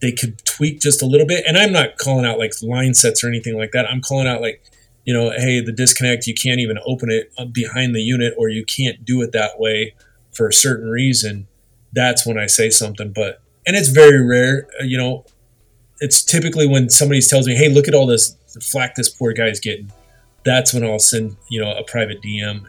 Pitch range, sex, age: 110-135 Hz, male, 30-49